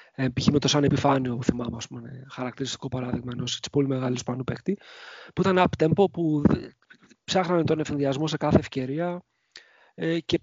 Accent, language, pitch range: Spanish, Greek, 135-175 Hz